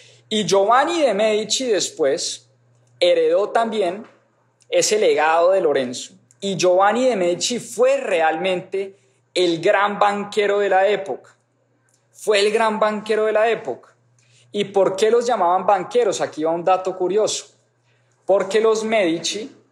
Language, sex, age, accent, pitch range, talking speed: English, male, 20-39, Colombian, 150-205 Hz, 135 wpm